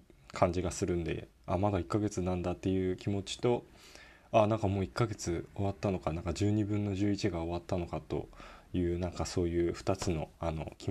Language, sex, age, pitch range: Japanese, male, 20-39, 85-105 Hz